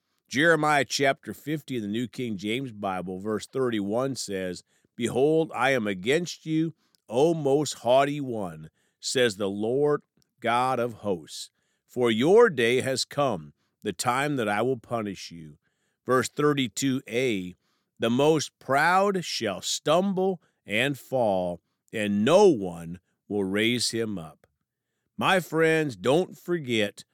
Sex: male